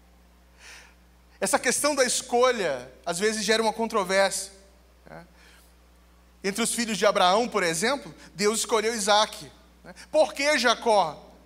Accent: Brazilian